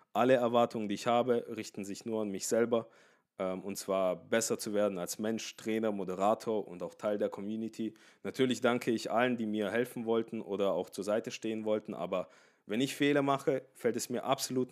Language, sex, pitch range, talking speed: German, male, 110-130 Hz, 195 wpm